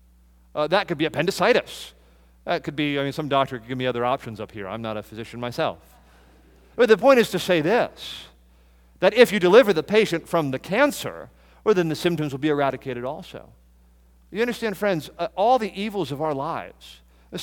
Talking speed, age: 205 wpm, 40-59